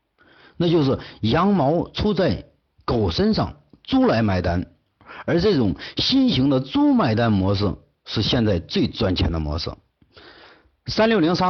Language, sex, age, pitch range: Chinese, male, 50-69, 100-160 Hz